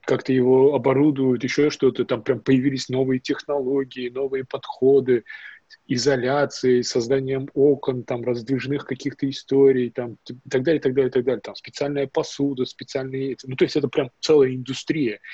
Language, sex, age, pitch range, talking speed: Russian, male, 20-39, 125-145 Hz, 155 wpm